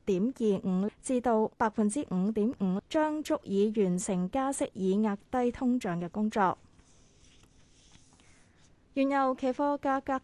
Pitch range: 195-255 Hz